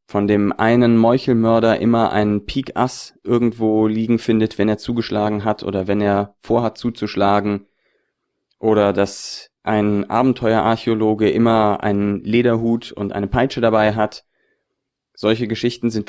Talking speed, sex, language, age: 125 wpm, male, German, 30-49